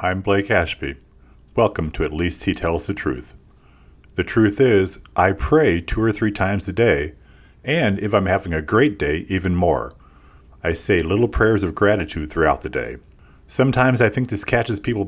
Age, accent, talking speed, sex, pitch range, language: 40-59, American, 185 wpm, male, 85-115 Hz, English